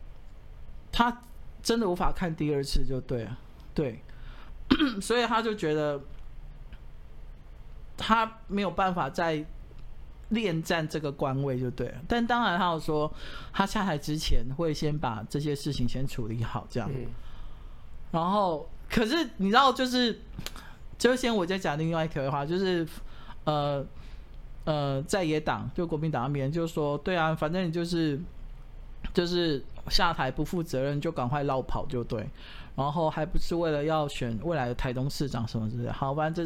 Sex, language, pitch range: male, Chinese, 135-190 Hz